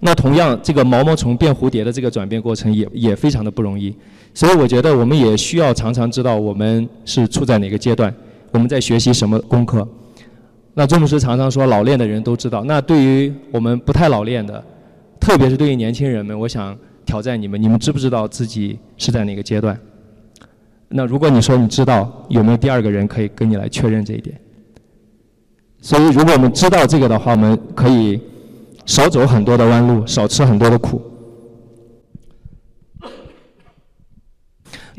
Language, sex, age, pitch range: Chinese, male, 20-39, 110-130 Hz